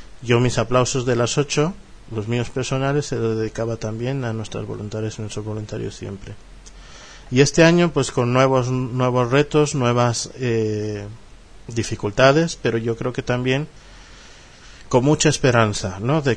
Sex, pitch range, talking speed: male, 110-130 Hz, 150 wpm